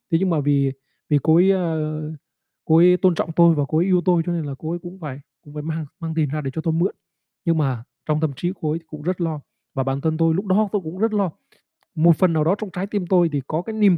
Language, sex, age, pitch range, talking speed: Vietnamese, male, 20-39, 145-180 Hz, 285 wpm